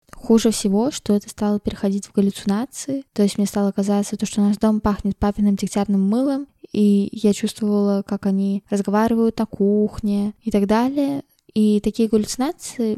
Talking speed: 155 wpm